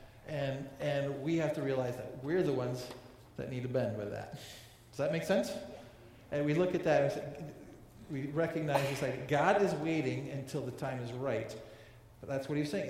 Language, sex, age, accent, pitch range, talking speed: English, male, 40-59, American, 120-165 Hz, 200 wpm